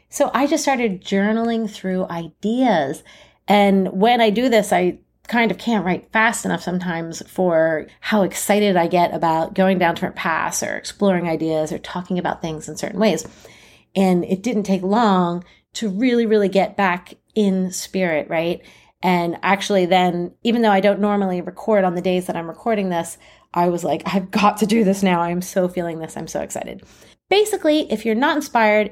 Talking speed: 185 wpm